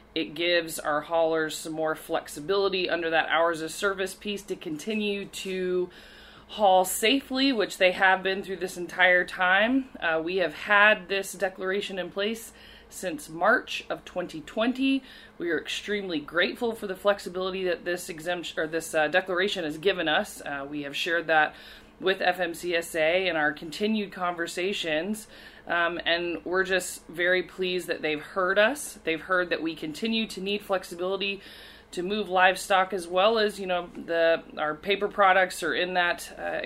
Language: English